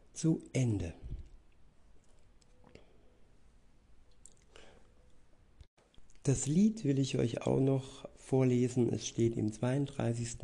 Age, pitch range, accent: 60-79, 115-135 Hz, German